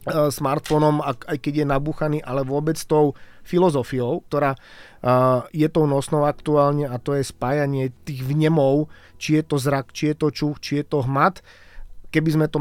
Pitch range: 135-155 Hz